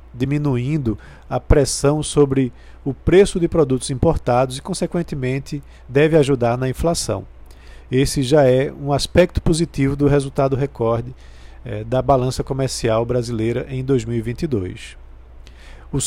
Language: Portuguese